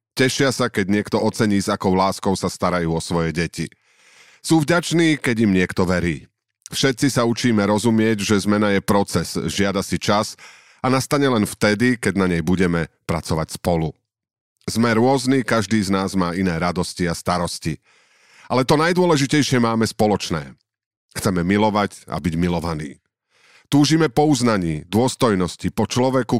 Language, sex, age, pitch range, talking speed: Slovak, male, 40-59, 90-120 Hz, 150 wpm